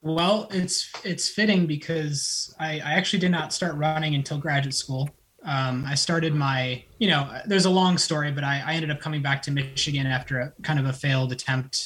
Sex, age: male, 20-39